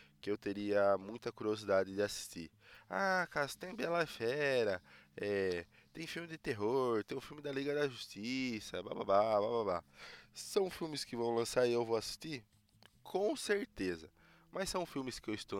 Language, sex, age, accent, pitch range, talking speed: Portuguese, male, 20-39, Brazilian, 100-150 Hz, 175 wpm